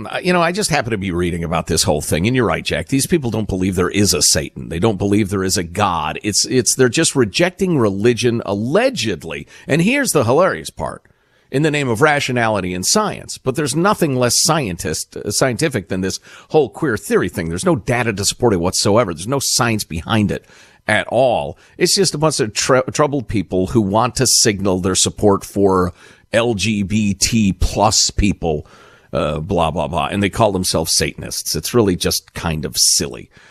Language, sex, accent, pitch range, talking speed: English, male, American, 95-130 Hz, 195 wpm